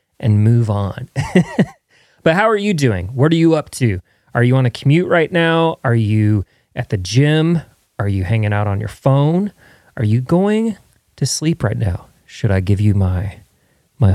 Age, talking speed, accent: 30-49, 190 wpm, American